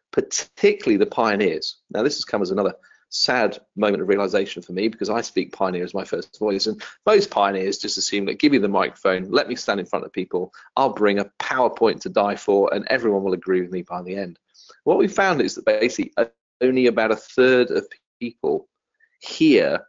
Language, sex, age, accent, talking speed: English, male, 40-59, British, 210 wpm